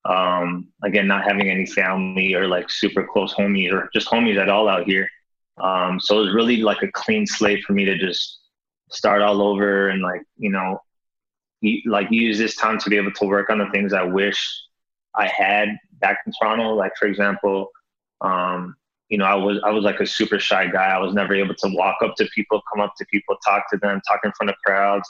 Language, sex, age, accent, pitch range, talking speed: English, male, 20-39, American, 95-105 Hz, 220 wpm